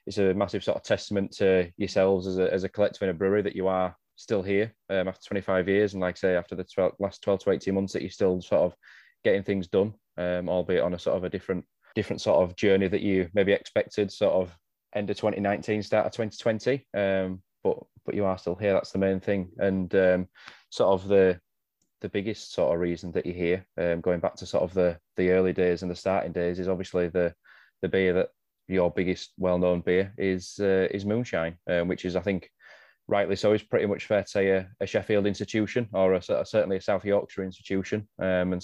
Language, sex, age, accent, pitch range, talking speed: English, male, 20-39, British, 95-105 Hz, 230 wpm